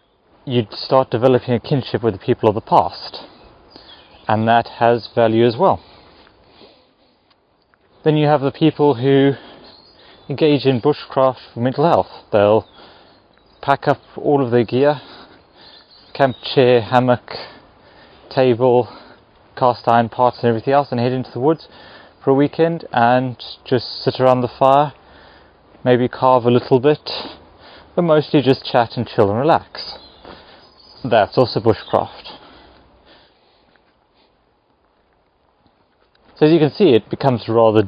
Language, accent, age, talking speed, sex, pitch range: English, British, 30-49, 135 wpm, male, 115-140 Hz